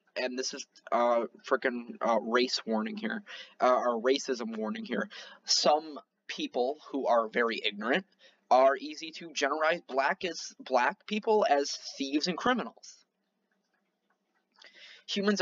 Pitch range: 130-200 Hz